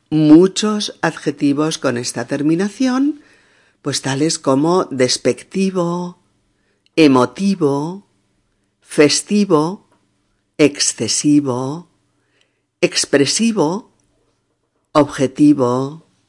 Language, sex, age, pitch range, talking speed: Spanish, female, 50-69, 135-180 Hz, 50 wpm